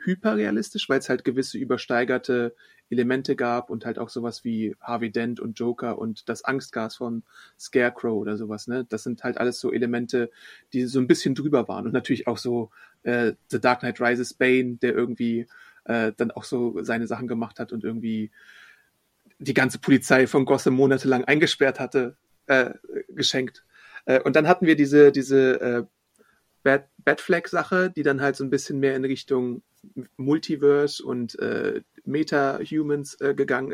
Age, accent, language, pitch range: 30-49, German, German, 120-150 Hz